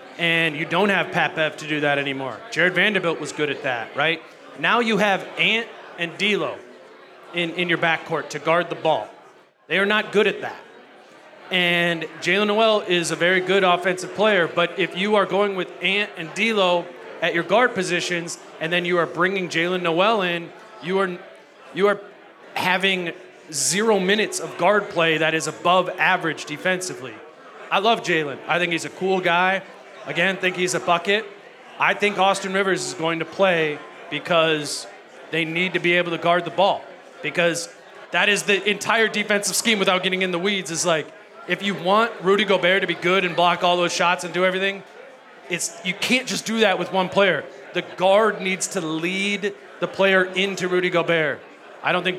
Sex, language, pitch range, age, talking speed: male, English, 170-195 Hz, 30-49, 190 wpm